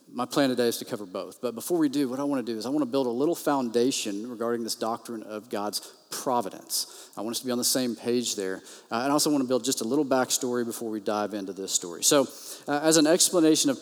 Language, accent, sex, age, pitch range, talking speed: English, American, male, 40-59, 120-160 Hz, 275 wpm